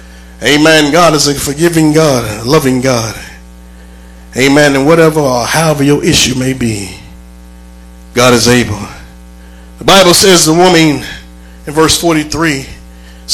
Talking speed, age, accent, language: 130 wpm, 30-49, American, English